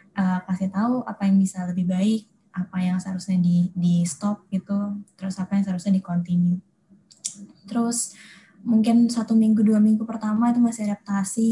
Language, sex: Indonesian, female